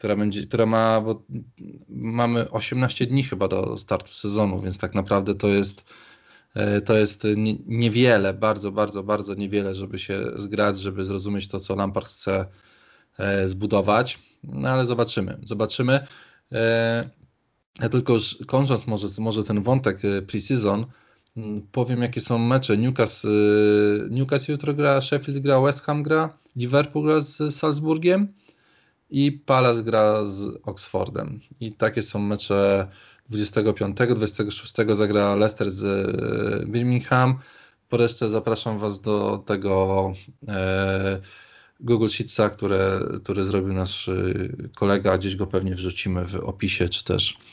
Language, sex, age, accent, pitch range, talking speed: Polish, male, 20-39, native, 100-120 Hz, 125 wpm